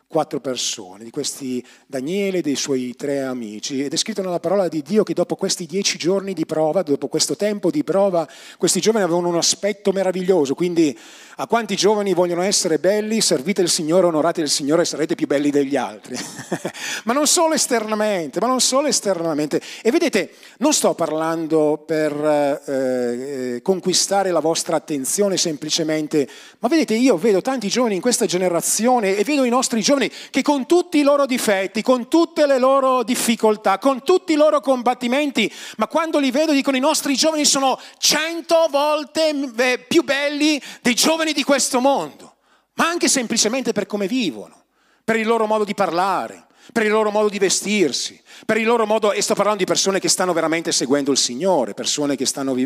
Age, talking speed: 40-59, 180 wpm